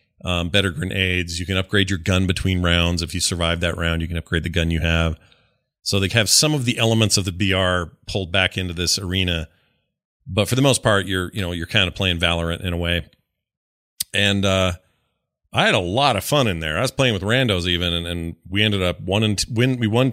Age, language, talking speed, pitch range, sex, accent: 40-59, English, 240 wpm, 90-120 Hz, male, American